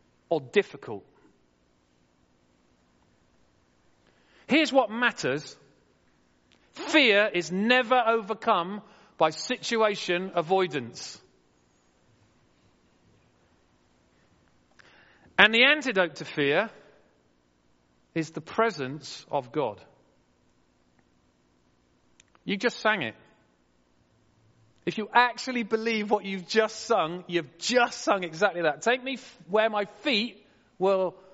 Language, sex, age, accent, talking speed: English, male, 40-59, British, 85 wpm